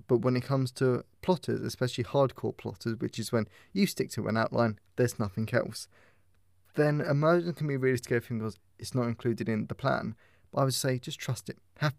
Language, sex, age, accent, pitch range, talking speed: English, male, 20-39, British, 115-140 Hz, 205 wpm